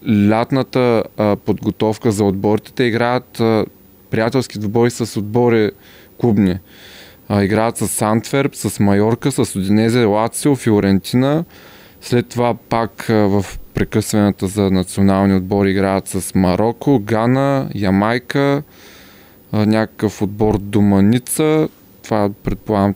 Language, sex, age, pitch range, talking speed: Bulgarian, male, 20-39, 95-120 Hz, 110 wpm